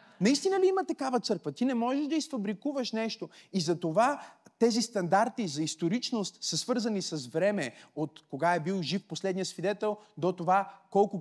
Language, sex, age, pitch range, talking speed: Bulgarian, male, 30-49, 160-225 Hz, 170 wpm